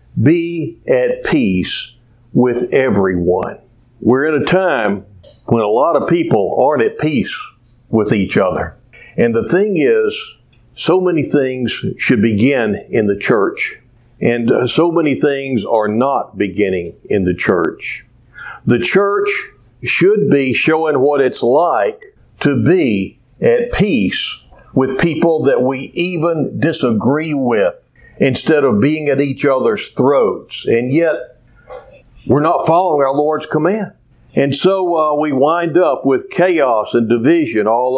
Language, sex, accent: English, male, American